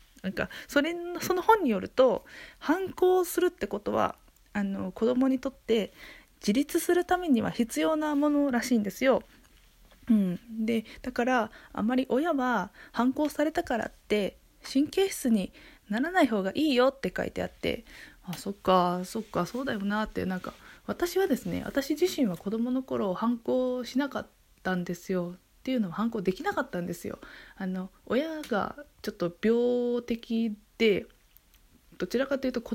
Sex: female